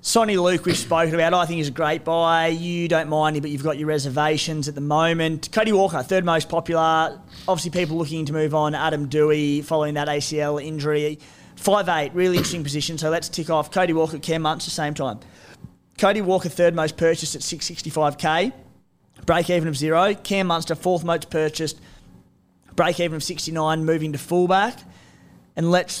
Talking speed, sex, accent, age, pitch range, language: 180 wpm, male, Australian, 20-39, 150-175 Hz, English